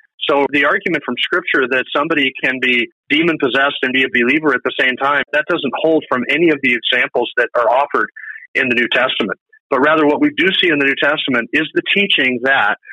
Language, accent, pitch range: English, American, 125-155 Hz